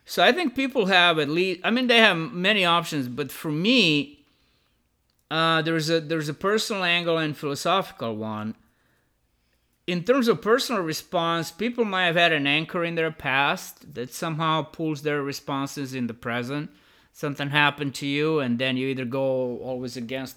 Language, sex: English, male